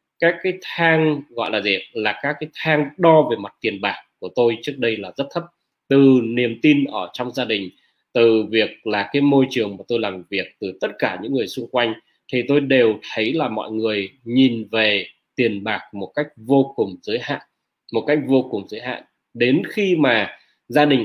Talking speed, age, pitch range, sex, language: 210 wpm, 20-39, 110-145 Hz, male, Vietnamese